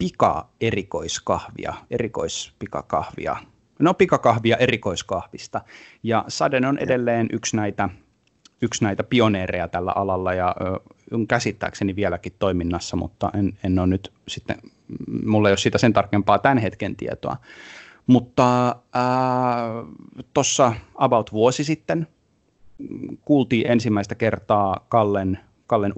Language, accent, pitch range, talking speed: Finnish, native, 100-125 Hz, 110 wpm